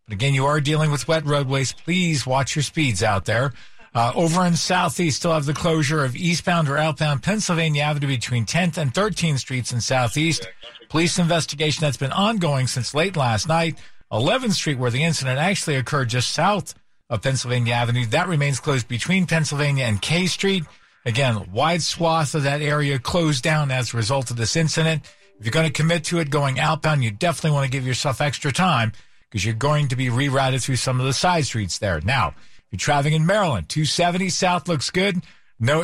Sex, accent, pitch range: male, American, 130-165 Hz